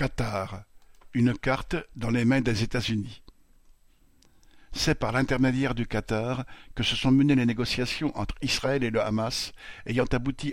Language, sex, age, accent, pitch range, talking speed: French, male, 50-69, French, 110-130 Hz, 150 wpm